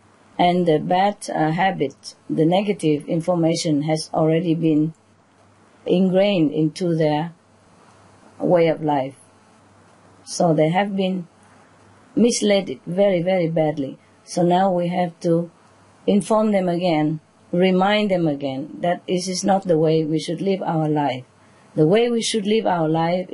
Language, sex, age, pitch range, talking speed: English, female, 40-59, 155-205 Hz, 140 wpm